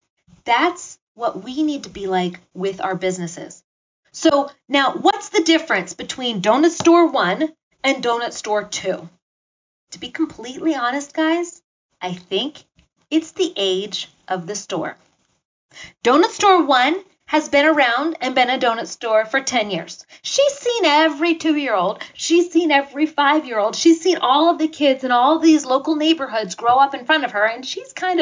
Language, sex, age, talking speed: English, female, 30-49, 165 wpm